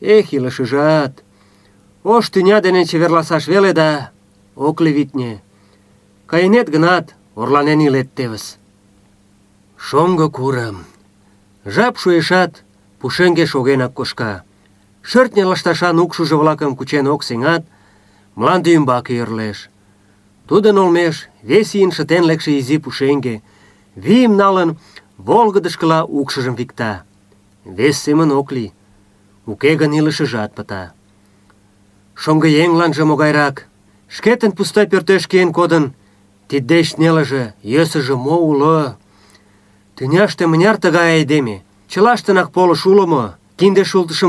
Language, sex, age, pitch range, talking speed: Russian, male, 40-59, 100-170 Hz, 105 wpm